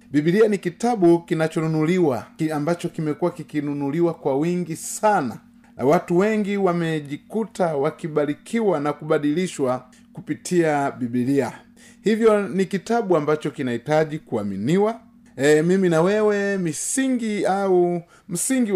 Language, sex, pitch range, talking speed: Swahili, male, 150-200 Hz, 100 wpm